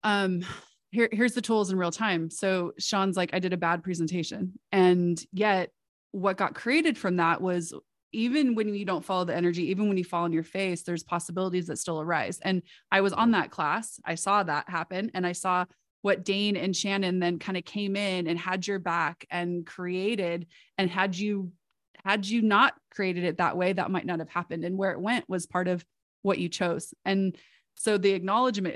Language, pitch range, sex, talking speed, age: English, 170-195 Hz, female, 210 wpm, 20-39